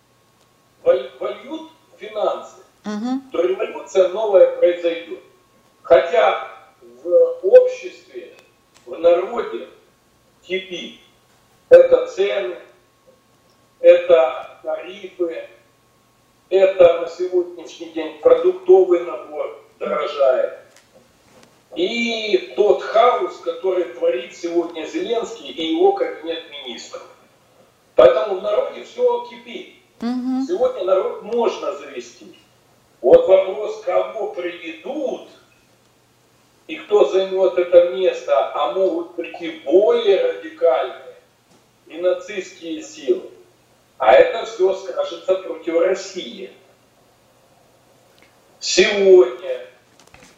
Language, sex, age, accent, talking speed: Russian, male, 40-59, native, 80 wpm